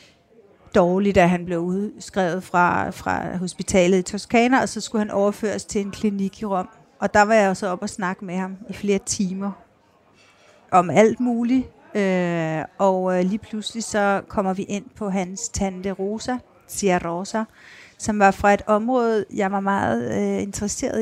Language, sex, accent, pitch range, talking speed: Danish, female, native, 180-205 Hz, 165 wpm